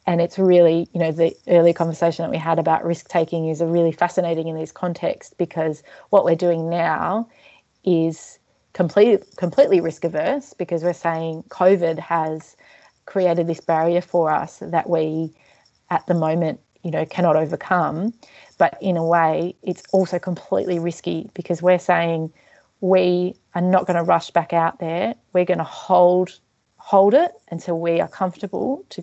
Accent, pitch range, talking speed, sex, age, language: Australian, 165-185 Hz, 165 wpm, female, 30-49, English